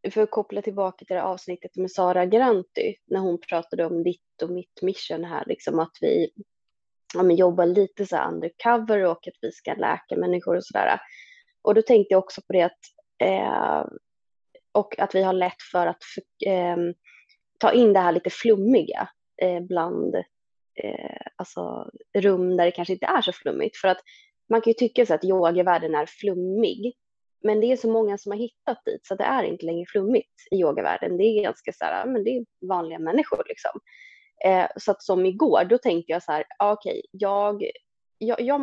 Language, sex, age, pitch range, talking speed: Swedish, female, 20-39, 180-230 Hz, 195 wpm